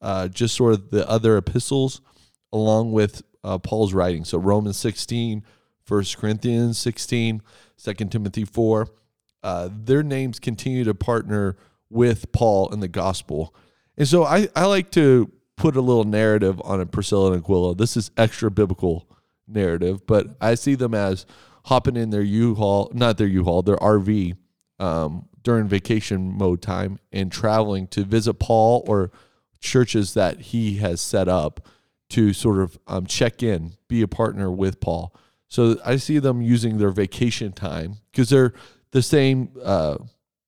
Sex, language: male, English